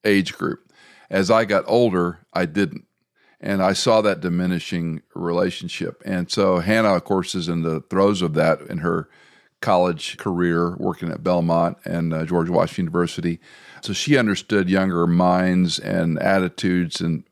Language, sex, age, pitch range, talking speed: English, male, 50-69, 90-110 Hz, 155 wpm